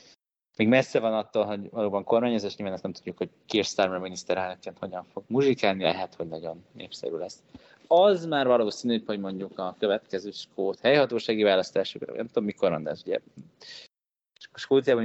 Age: 20-39